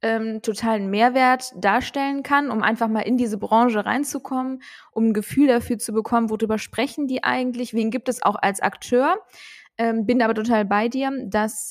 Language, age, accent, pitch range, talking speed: German, 20-39, German, 205-235 Hz, 180 wpm